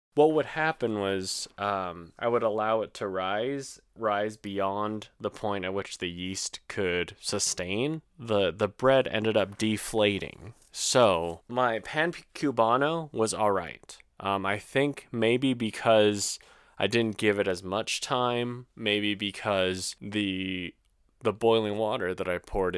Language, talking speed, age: English, 145 wpm, 20-39